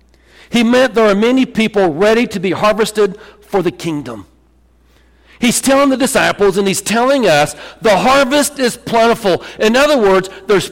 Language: English